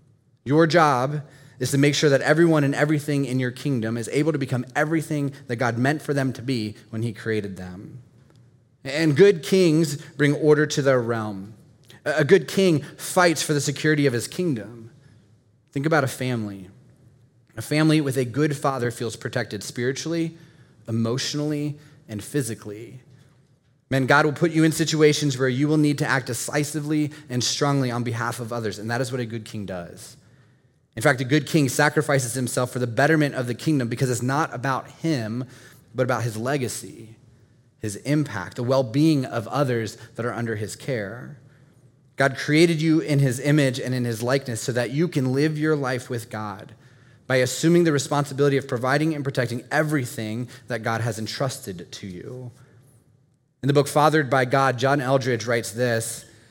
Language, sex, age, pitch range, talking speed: English, male, 20-39, 120-150 Hz, 180 wpm